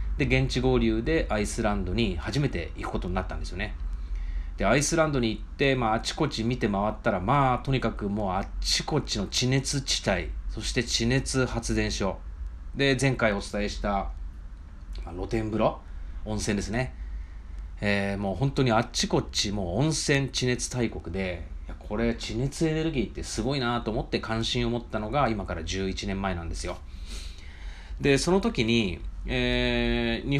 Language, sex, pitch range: Japanese, male, 85-125 Hz